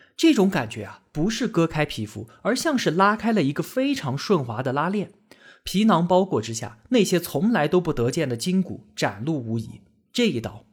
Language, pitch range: Chinese, 130-210 Hz